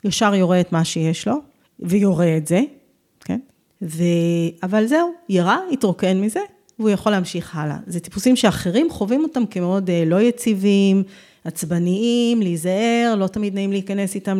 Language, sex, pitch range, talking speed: Hebrew, female, 170-230 Hz, 145 wpm